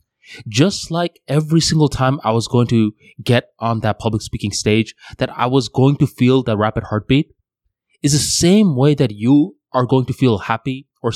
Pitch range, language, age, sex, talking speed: 105-135 Hz, English, 20-39, male, 195 wpm